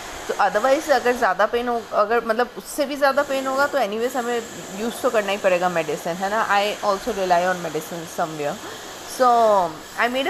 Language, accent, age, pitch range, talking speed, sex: Hindi, native, 30-49, 225-285 Hz, 200 wpm, female